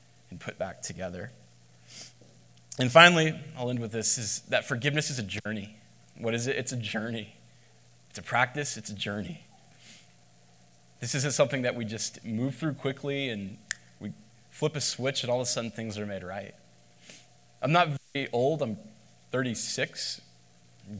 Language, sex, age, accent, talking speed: English, male, 20-39, American, 165 wpm